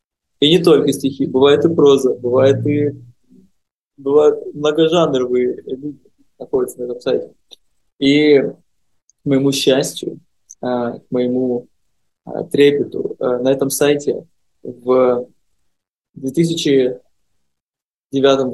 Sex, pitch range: male, 125-145 Hz